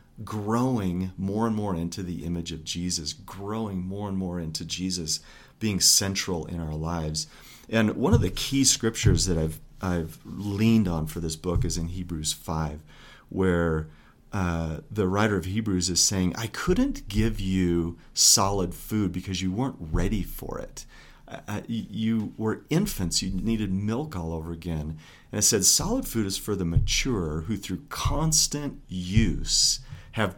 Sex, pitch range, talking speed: male, 85-110 Hz, 160 wpm